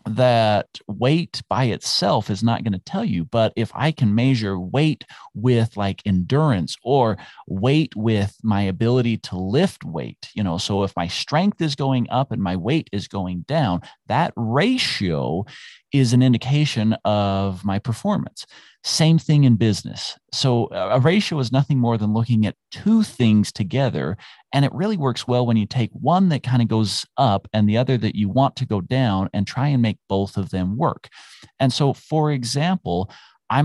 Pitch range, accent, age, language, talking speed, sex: 100-135 Hz, American, 40-59, English, 180 wpm, male